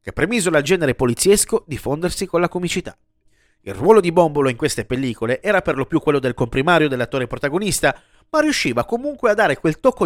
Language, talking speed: Italian, 195 wpm